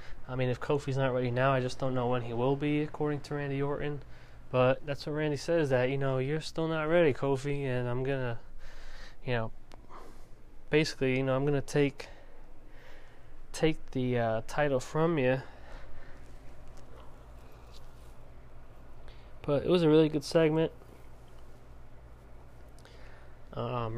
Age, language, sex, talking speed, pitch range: 20-39, English, male, 145 wpm, 120-150 Hz